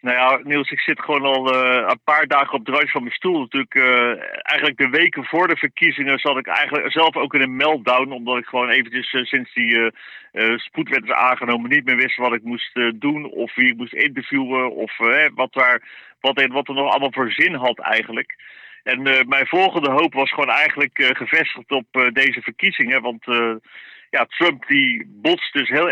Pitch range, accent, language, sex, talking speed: 120-140 Hz, Dutch, Dutch, male, 220 wpm